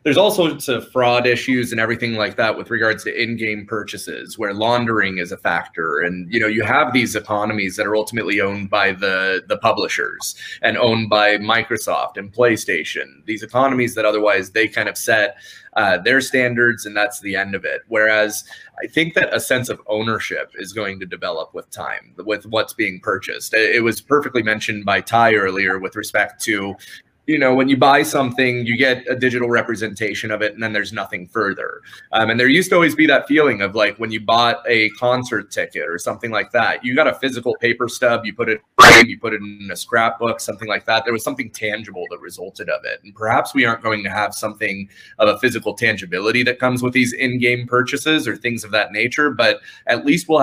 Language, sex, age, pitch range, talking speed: English, male, 30-49, 105-125 Hz, 210 wpm